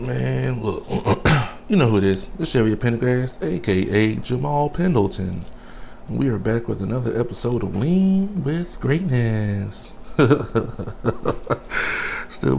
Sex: male